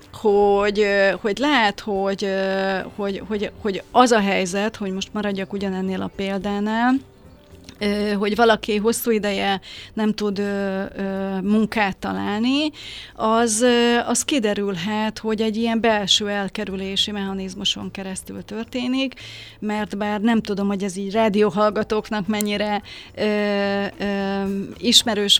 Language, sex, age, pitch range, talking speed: Hungarian, female, 30-49, 195-225 Hz, 120 wpm